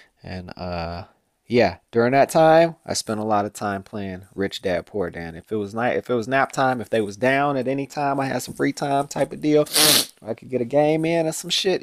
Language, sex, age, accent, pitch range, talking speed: English, male, 20-39, American, 120-150 Hz, 255 wpm